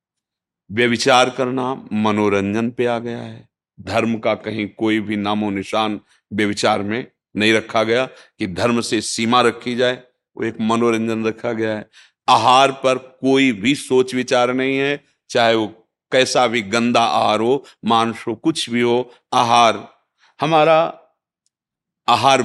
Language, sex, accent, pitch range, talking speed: Hindi, male, native, 105-130 Hz, 145 wpm